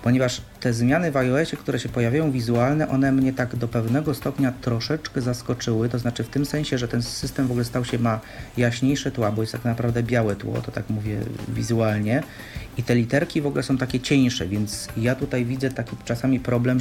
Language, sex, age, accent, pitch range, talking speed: Polish, male, 40-59, native, 115-130 Hz, 205 wpm